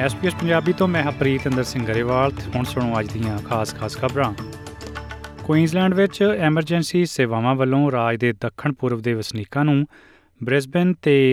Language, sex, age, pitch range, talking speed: Punjabi, male, 30-49, 110-140 Hz, 150 wpm